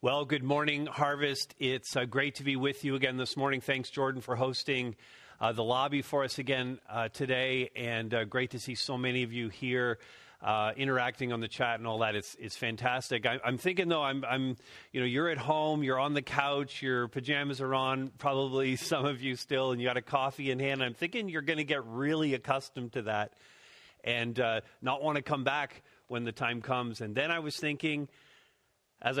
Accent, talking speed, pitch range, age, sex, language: American, 215 wpm, 115-140 Hz, 40-59, male, English